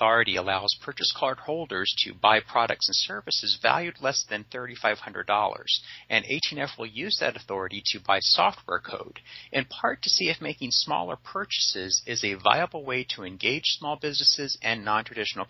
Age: 40-59